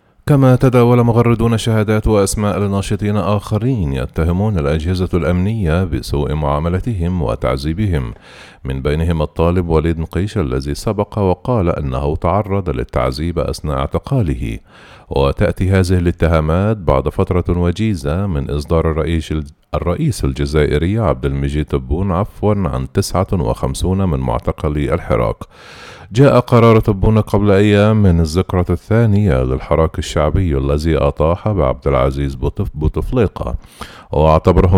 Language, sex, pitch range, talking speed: Arabic, male, 75-100 Hz, 105 wpm